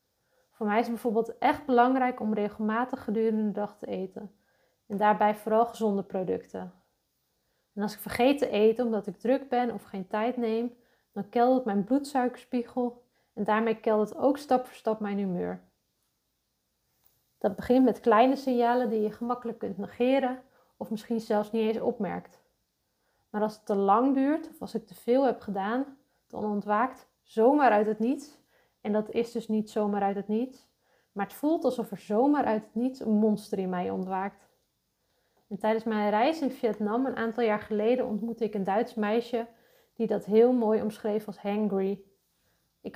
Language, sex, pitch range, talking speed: Dutch, female, 210-245 Hz, 180 wpm